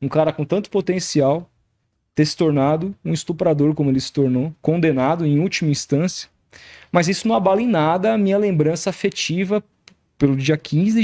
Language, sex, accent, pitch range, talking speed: Portuguese, male, Brazilian, 140-180 Hz, 170 wpm